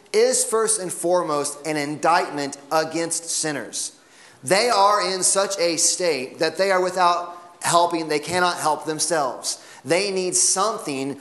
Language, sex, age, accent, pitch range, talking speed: English, male, 30-49, American, 150-185 Hz, 140 wpm